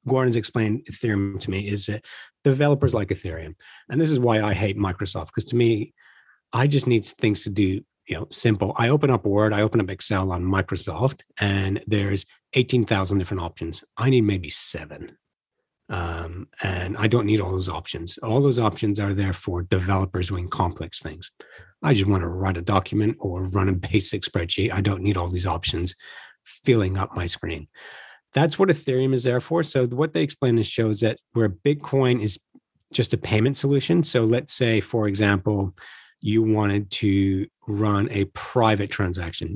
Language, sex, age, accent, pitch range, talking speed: English, male, 40-59, American, 95-115 Hz, 185 wpm